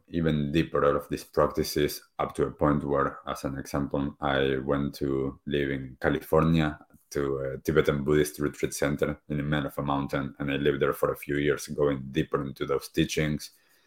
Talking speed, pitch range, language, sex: 195 wpm, 70-75 Hz, English, male